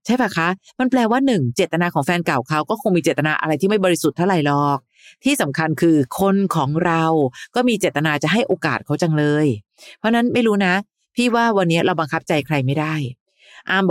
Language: Thai